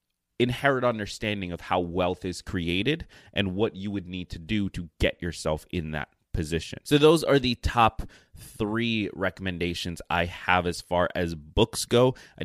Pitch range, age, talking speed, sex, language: 90-110 Hz, 30-49, 170 wpm, male, English